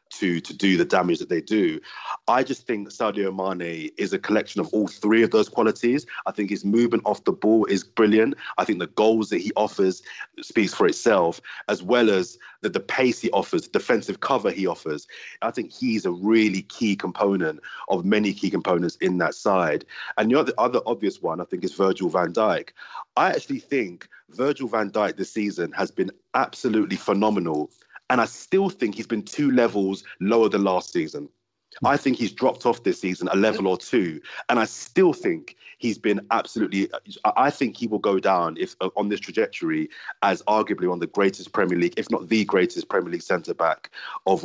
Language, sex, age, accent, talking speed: English, male, 30-49, British, 200 wpm